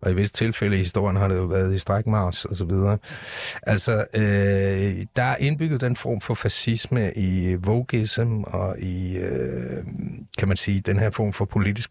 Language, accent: Danish, native